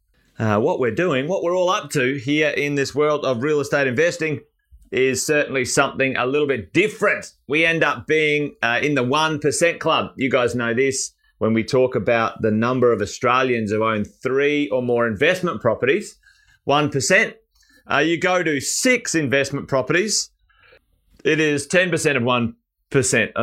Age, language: 30-49, English